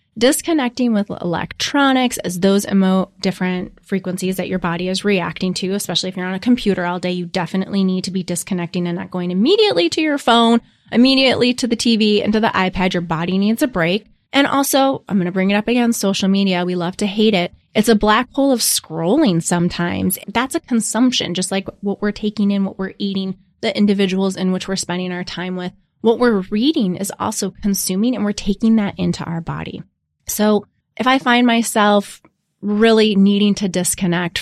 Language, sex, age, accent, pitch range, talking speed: English, female, 20-39, American, 180-225 Hz, 200 wpm